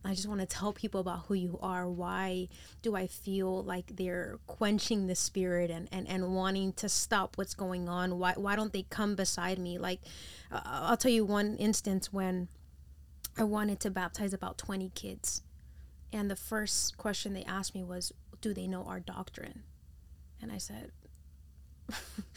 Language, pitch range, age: English, 175-205 Hz, 20-39